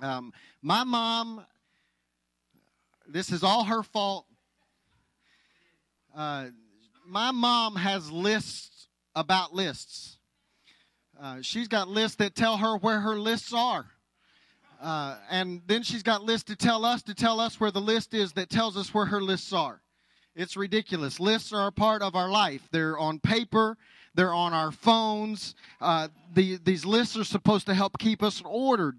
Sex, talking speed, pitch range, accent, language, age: male, 155 wpm, 155-225 Hz, American, English, 40-59